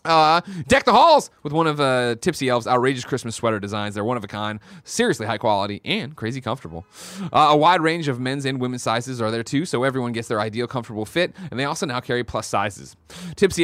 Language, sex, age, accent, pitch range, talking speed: English, male, 30-49, American, 120-185 Hz, 230 wpm